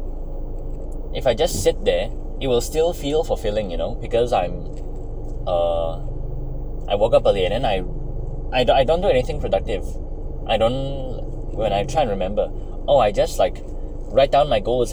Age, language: 20-39, English